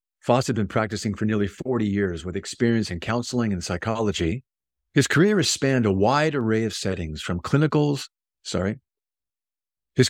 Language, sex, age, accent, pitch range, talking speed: English, male, 50-69, American, 95-130 Hz, 160 wpm